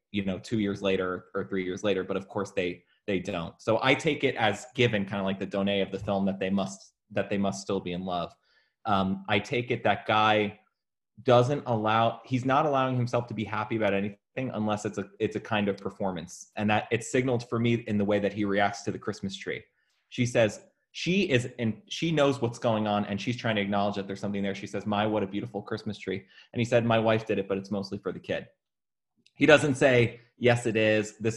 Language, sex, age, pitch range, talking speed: English, male, 20-39, 100-120 Hz, 245 wpm